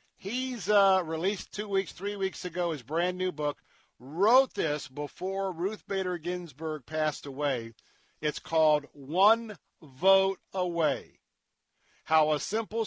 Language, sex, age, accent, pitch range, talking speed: English, male, 50-69, American, 145-180 Hz, 130 wpm